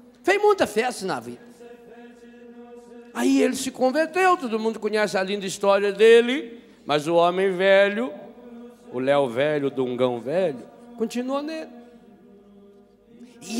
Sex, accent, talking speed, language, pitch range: male, Brazilian, 130 wpm, Portuguese, 200-260 Hz